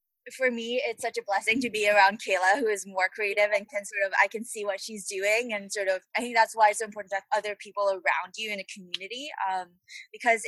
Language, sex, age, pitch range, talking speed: English, female, 20-39, 175-215 Hz, 260 wpm